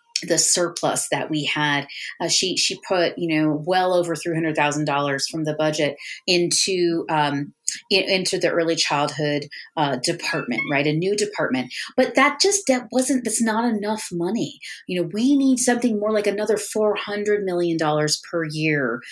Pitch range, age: 160-210 Hz, 30-49